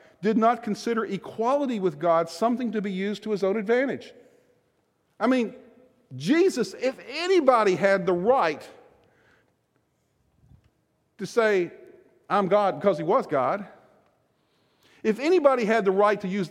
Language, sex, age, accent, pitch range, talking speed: English, male, 50-69, American, 195-240 Hz, 135 wpm